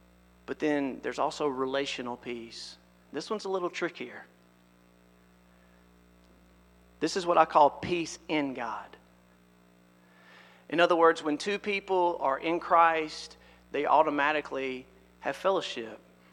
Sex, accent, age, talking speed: male, American, 40-59, 120 wpm